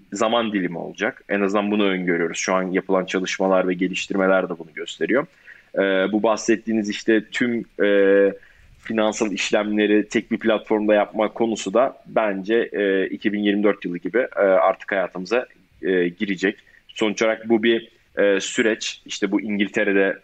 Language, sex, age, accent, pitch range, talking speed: Turkish, male, 30-49, native, 95-110 Hz, 125 wpm